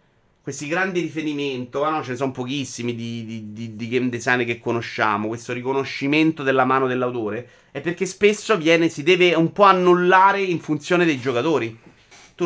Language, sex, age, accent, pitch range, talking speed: Italian, male, 30-49, native, 125-175 Hz, 170 wpm